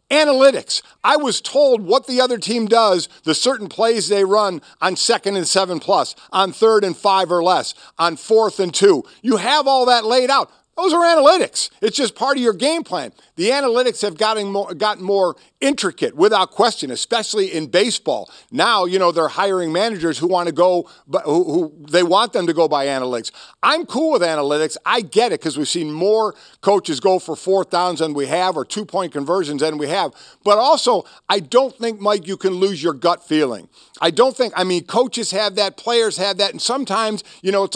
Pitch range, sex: 175-225 Hz, male